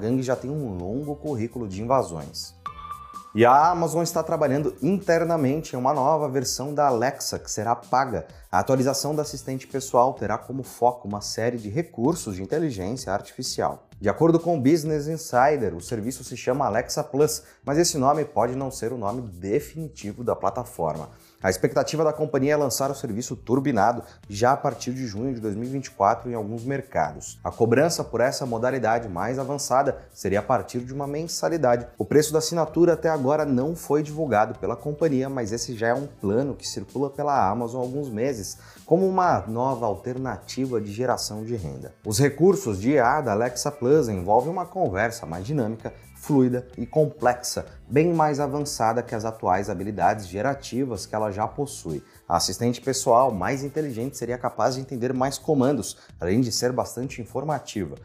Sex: male